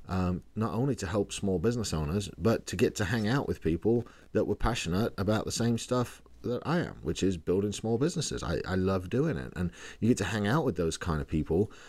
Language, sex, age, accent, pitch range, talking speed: English, male, 40-59, British, 90-110 Hz, 235 wpm